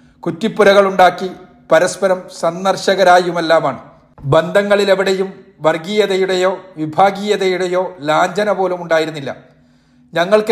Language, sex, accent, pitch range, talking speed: Malayalam, male, native, 170-195 Hz, 65 wpm